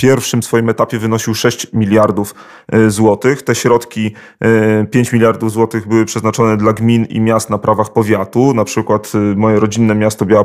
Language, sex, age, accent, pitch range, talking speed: Polish, male, 30-49, native, 110-120 Hz, 160 wpm